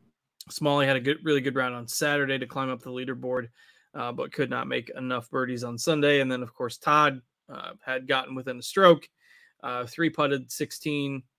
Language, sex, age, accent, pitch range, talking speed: English, male, 20-39, American, 130-150 Hz, 200 wpm